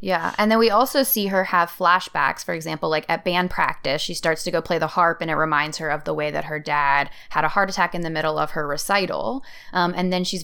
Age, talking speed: 20-39, 265 wpm